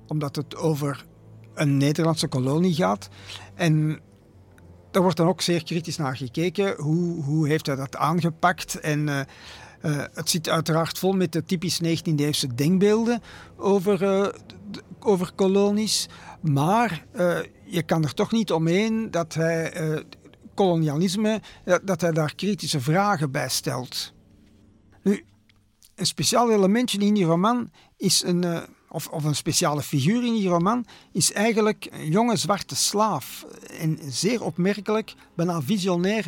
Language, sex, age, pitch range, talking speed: Dutch, male, 50-69, 150-190 Hz, 145 wpm